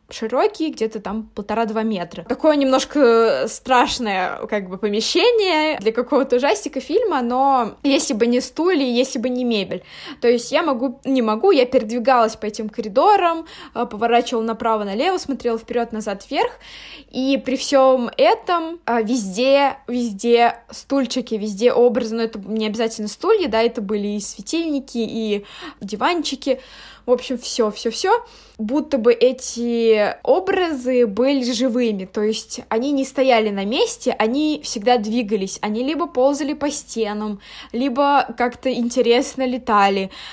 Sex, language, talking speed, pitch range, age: female, Russian, 135 wpm, 225-270 Hz, 20-39